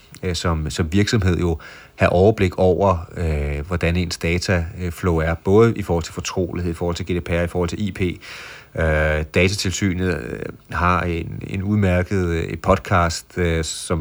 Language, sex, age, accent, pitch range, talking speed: Danish, male, 30-49, native, 85-100 Hz, 135 wpm